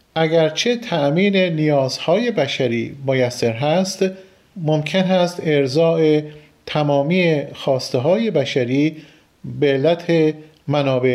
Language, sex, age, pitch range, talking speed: Persian, male, 40-59, 140-180 Hz, 85 wpm